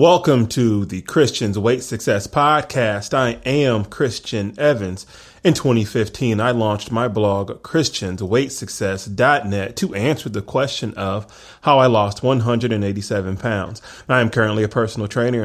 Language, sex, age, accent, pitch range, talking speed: English, male, 30-49, American, 105-130 Hz, 130 wpm